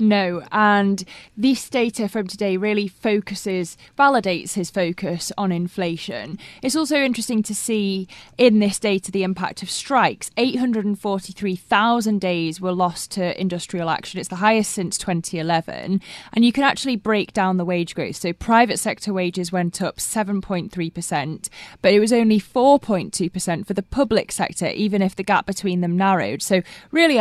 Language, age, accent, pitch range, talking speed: English, 20-39, British, 185-220 Hz, 155 wpm